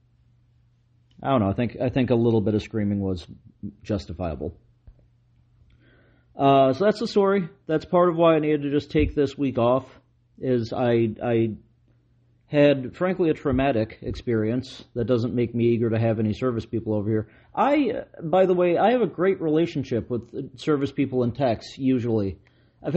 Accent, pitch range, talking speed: American, 120-150 Hz, 175 wpm